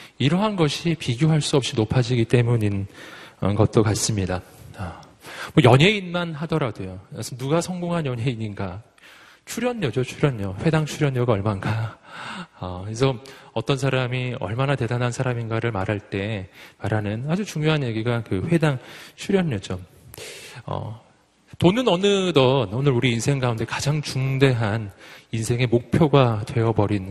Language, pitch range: Korean, 110-150 Hz